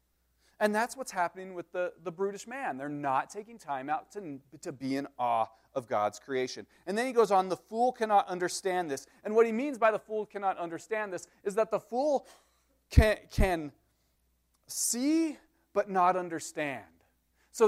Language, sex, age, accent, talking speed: English, male, 40-59, American, 180 wpm